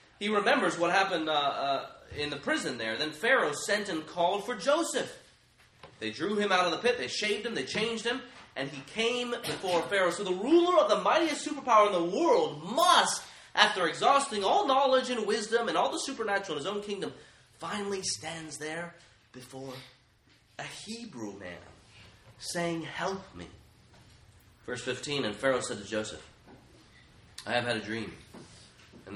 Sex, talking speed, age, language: male, 170 wpm, 30-49, English